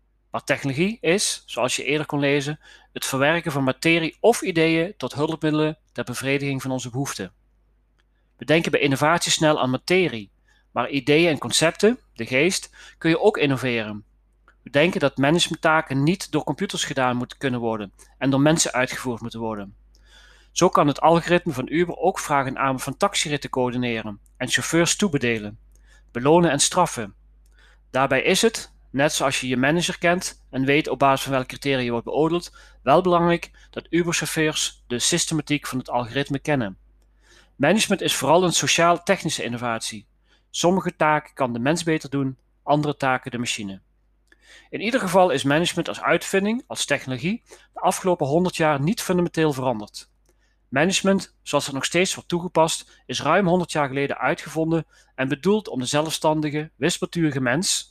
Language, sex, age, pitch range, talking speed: Dutch, male, 40-59, 130-170 Hz, 160 wpm